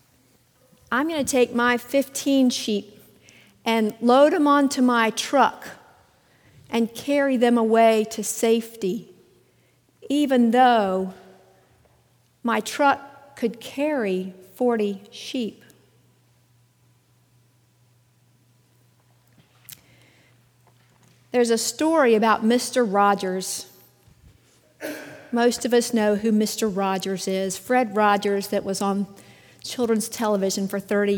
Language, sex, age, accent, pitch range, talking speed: English, female, 50-69, American, 190-250 Hz, 95 wpm